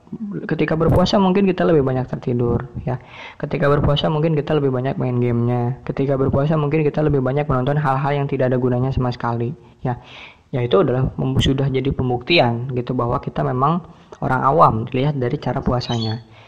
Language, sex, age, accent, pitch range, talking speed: Indonesian, female, 20-39, native, 130-155 Hz, 170 wpm